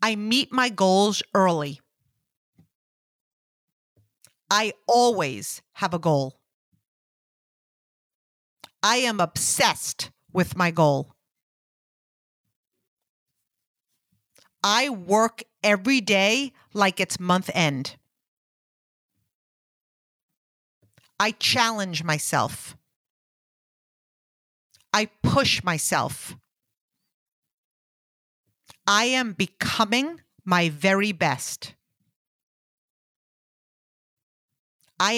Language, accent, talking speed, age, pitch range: English, American, 65 wpm, 50-69, 160-210 Hz